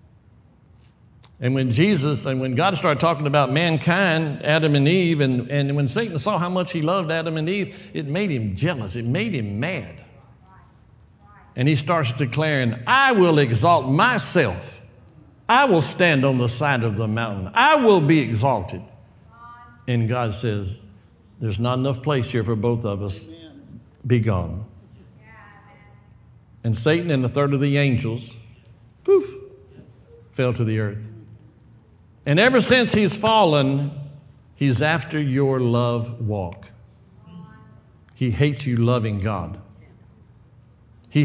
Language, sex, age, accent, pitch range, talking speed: English, male, 60-79, American, 110-155 Hz, 140 wpm